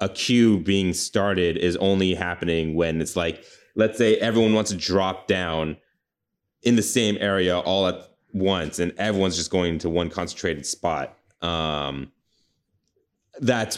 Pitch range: 85-105 Hz